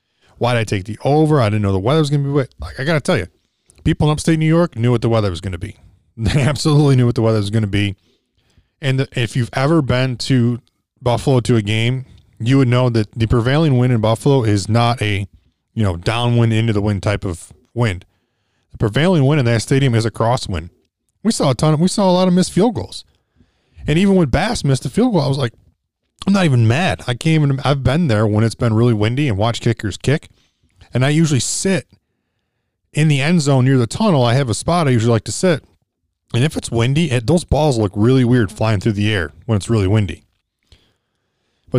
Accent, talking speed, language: American, 240 wpm, English